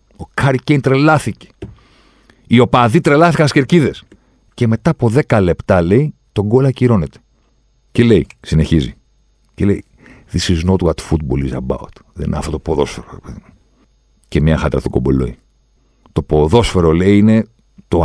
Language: Greek